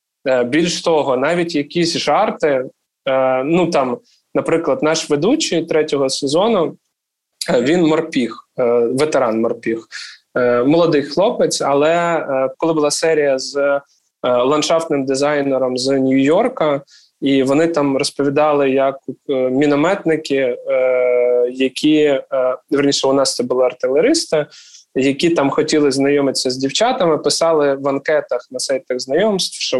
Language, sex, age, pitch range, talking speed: Ukrainian, male, 20-39, 135-165 Hz, 105 wpm